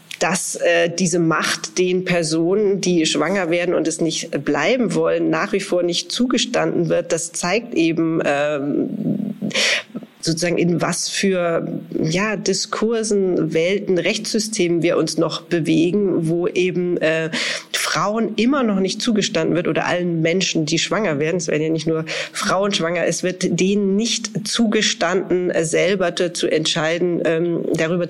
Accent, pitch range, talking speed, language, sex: German, 165-190 Hz, 145 wpm, German, female